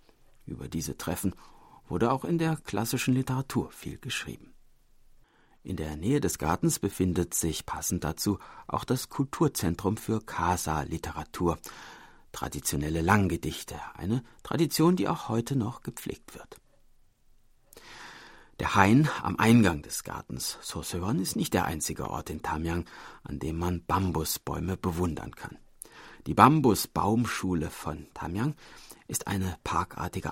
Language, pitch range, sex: German, 85-115 Hz, male